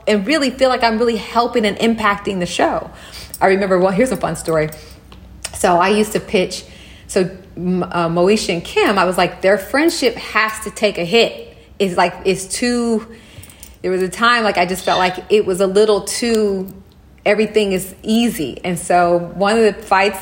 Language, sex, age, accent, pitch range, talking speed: English, female, 30-49, American, 180-235 Hz, 195 wpm